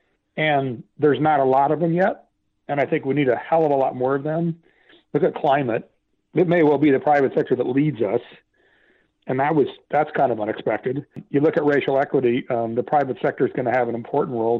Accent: American